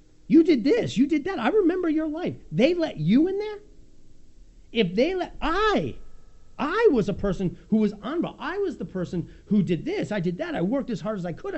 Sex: male